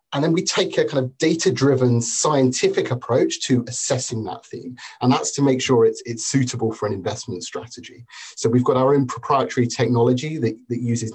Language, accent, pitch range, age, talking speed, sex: English, British, 115-135 Hz, 30-49, 195 wpm, male